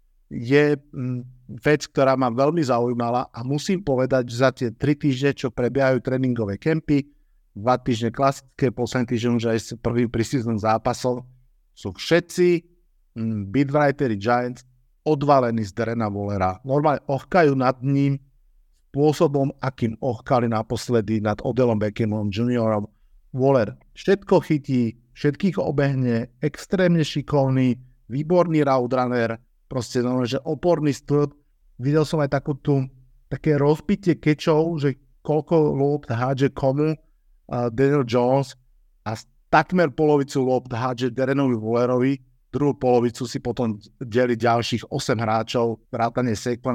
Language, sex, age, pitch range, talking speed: Slovak, male, 50-69, 120-145 Hz, 125 wpm